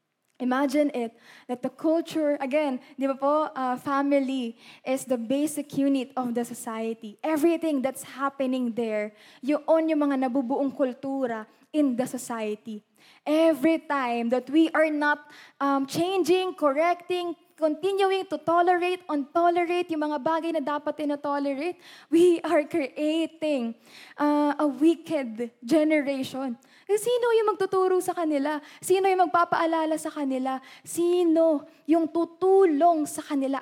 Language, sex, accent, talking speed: Filipino, female, native, 125 wpm